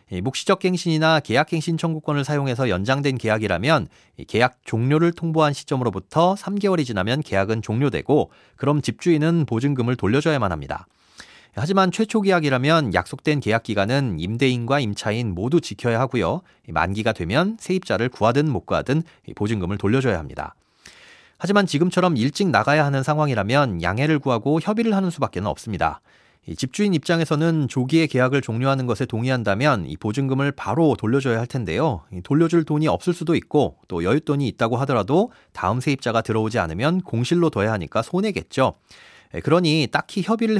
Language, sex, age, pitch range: Korean, male, 40-59, 115-165 Hz